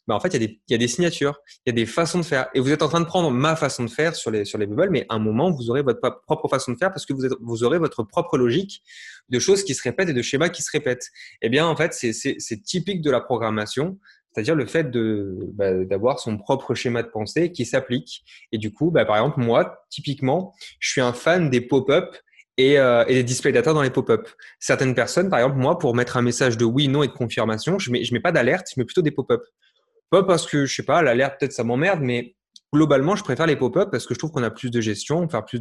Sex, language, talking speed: male, French, 285 wpm